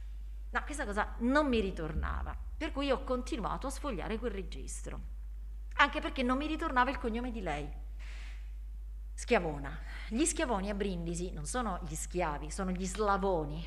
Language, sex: Italian, female